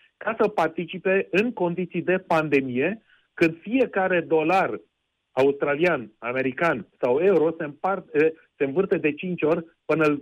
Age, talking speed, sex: 40-59, 130 wpm, male